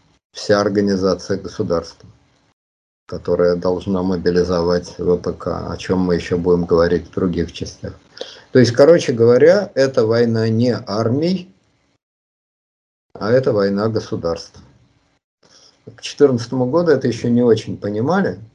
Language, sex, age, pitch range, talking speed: Russian, male, 50-69, 95-125 Hz, 115 wpm